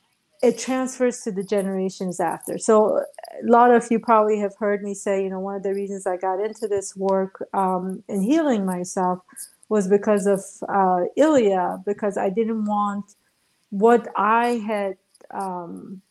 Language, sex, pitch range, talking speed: English, female, 195-230 Hz, 165 wpm